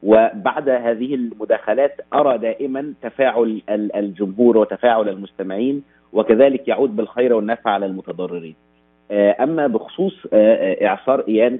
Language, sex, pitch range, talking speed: Arabic, male, 100-130 Hz, 100 wpm